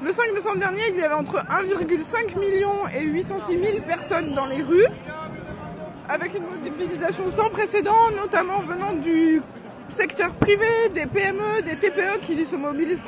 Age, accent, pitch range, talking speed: 20-39, French, 310-410 Hz, 155 wpm